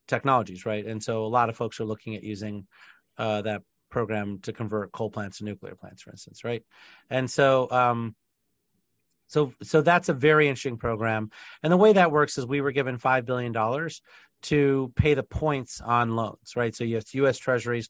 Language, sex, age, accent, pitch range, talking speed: English, male, 40-59, American, 110-140 Hz, 200 wpm